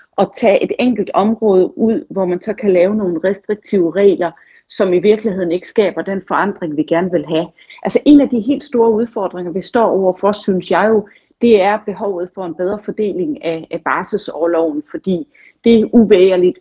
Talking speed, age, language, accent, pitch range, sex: 180 wpm, 40-59, Danish, native, 180-230 Hz, female